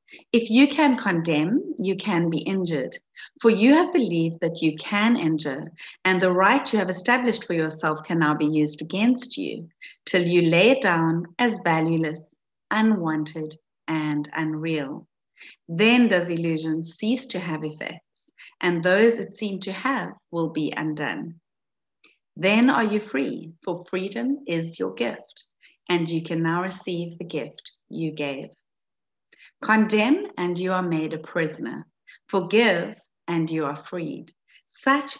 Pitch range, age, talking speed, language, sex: 160-220 Hz, 30-49, 150 wpm, English, female